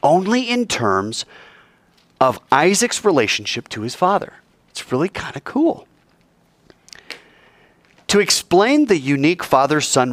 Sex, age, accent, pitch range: male, 30-49, American, 115-195 Hz